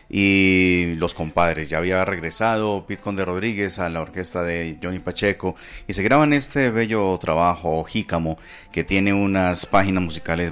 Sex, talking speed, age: male, 155 wpm, 30-49